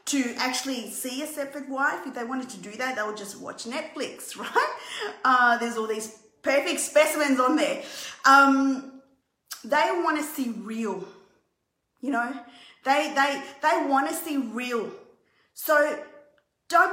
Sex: female